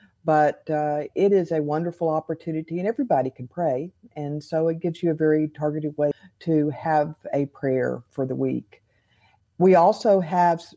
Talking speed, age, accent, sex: 165 wpm, 50-69, American, female